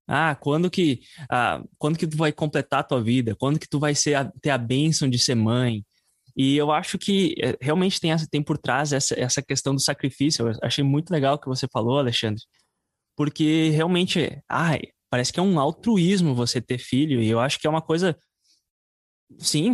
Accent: Brazilian